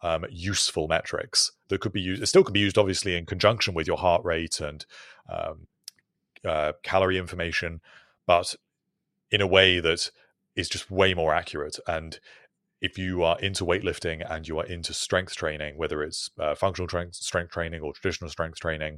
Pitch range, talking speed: 80-100 Hz, 175 wpm